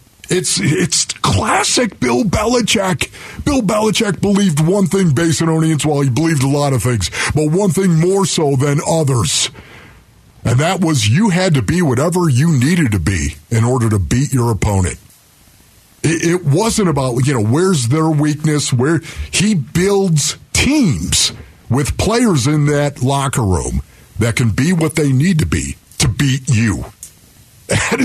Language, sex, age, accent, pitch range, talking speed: English, male, 50-69, American, 125-180 Hz, 165 wpm